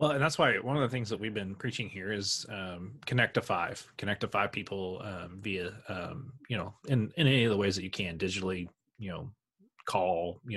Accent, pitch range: American, 95-120 Hz